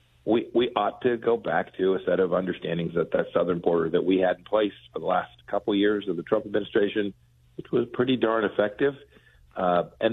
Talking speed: 220 wpm